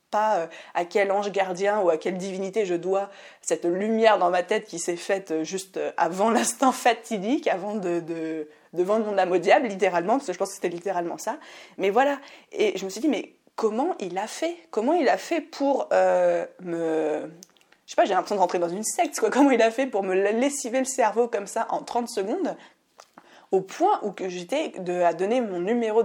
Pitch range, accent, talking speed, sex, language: 180-235 Hz, French, 215 wpm, female, French